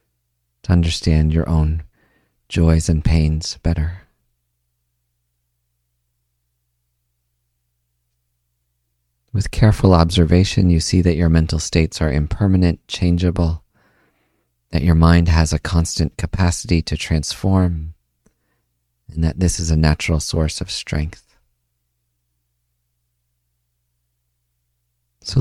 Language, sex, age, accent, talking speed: English, male, 40-59, American, 90 wpm